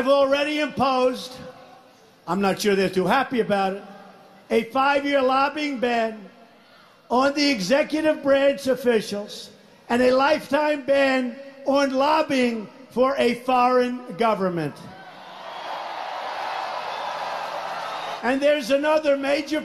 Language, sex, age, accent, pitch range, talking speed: English, male, 50-69, American, 210-270 Hz, 100 wpm